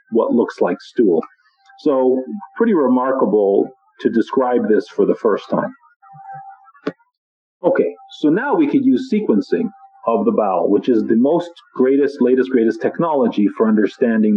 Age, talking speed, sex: 50-69, 140 wpm, male